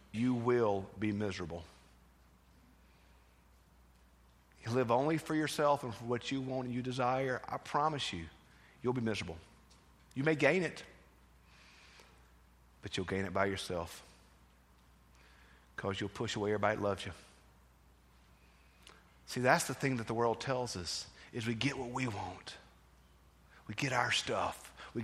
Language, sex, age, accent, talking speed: English, male, 40-59, American, 145 wpm